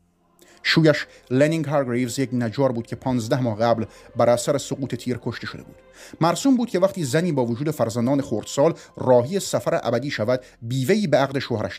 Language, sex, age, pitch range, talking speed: Persian, male, 30-49, 115-145 Hz, 175 wpm